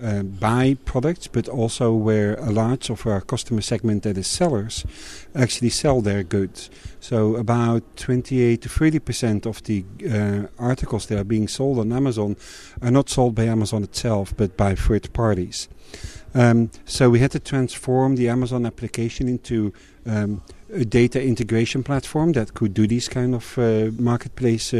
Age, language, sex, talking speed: 50-69, English, male, 165 wpm